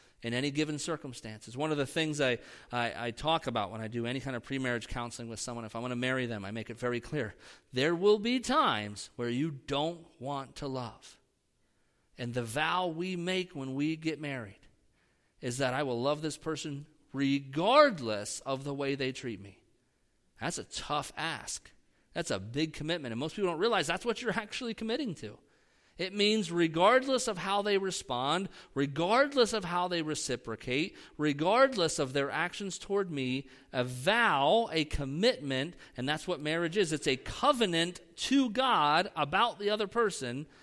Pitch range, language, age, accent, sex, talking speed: 125-180 Hz, English, 40-59, American, male, 180 wpm